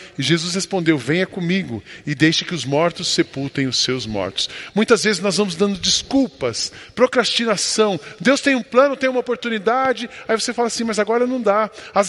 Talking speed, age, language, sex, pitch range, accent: 185 wpm, 20-39, Portuguese, male, 160-235 Hz, Brazilian